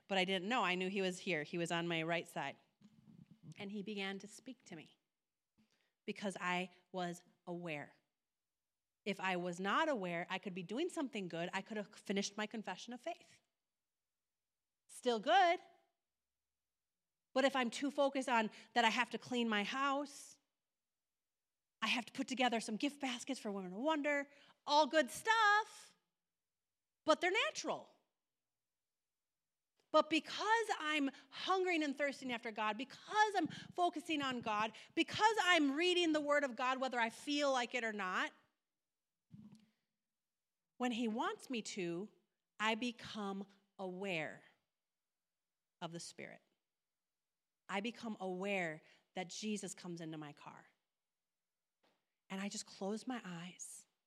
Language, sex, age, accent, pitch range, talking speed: English, female, 30-49, American, 190-280 Hz, 145 wpm